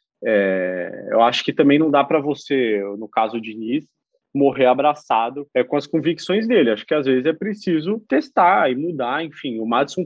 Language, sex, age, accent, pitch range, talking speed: Portuguese, male, 20-39, Brazilian, 130-210 Hz, 190 wpm